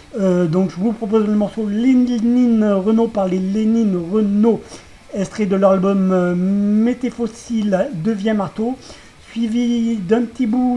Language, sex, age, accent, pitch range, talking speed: French, male, 40-59, French, 195-235 Hz, 140 wpm